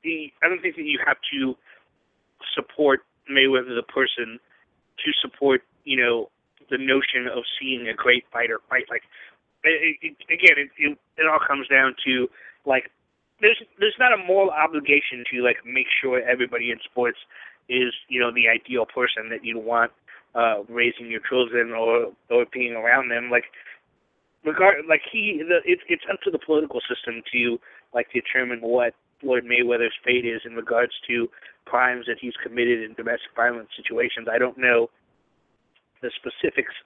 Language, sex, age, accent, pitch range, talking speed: English, male, 30-49, American, 120-150 Hz, 165 wpm